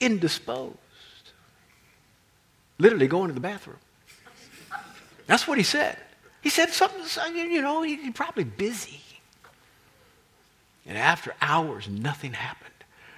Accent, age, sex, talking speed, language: American, 50-69, male, 105 wpm, English